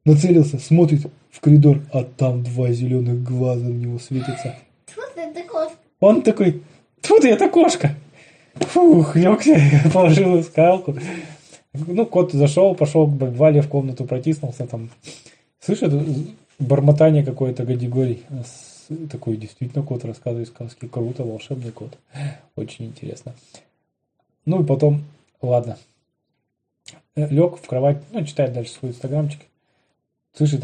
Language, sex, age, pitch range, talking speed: Russian, male, 20-39, 120-155 Hz, 120 wpm